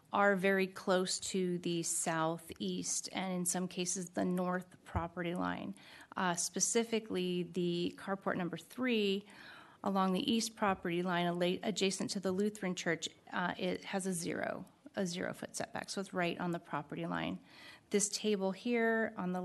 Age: 30-49